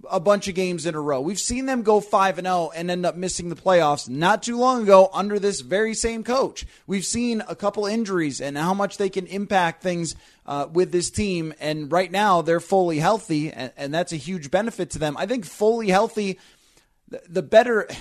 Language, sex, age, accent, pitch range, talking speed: English, male, 20-39, American, 165-200 Hz, 220 wpm